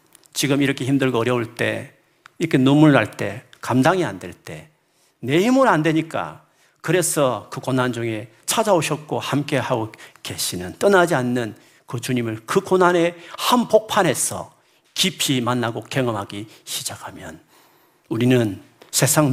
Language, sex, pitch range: Korean, male, 115-175 Hz